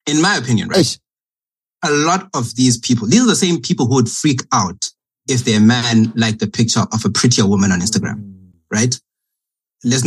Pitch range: 105-125 Hz